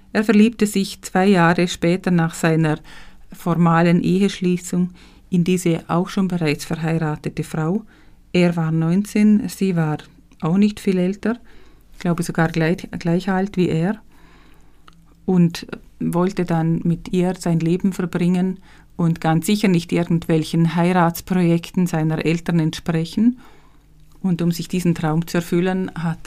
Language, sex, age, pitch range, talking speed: German, female, 50-69, 165-190 Hz, 135 wpm